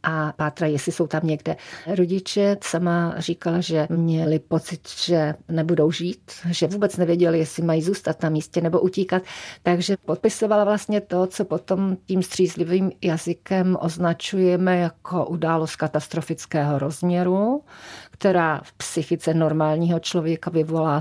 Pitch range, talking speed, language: 160-185 Hz, 130 wpm, Czech